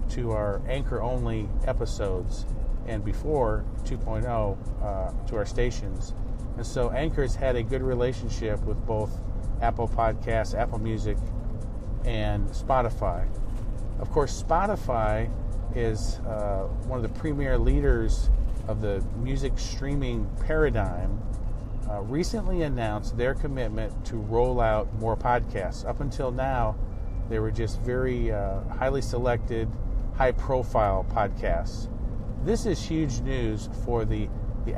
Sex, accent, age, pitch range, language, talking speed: male, American, 40-59, 105-125 Hz, English, 120 wpm